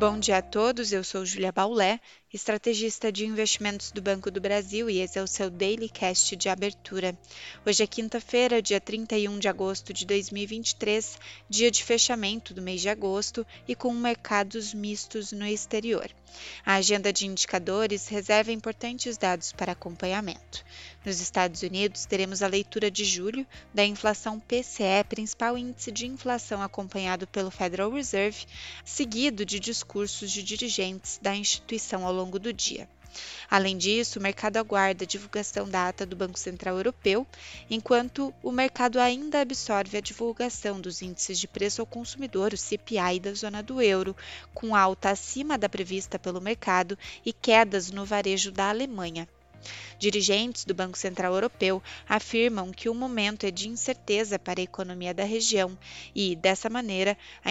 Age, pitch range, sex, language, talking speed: 20-39, 190-225 Hz, female, Portuguese, 160 wpm